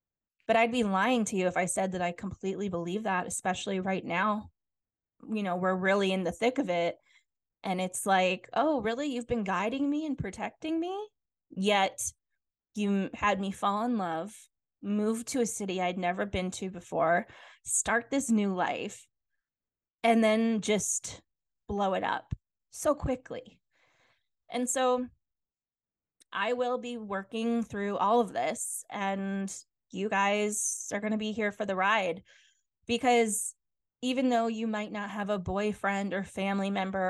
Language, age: English, 20-39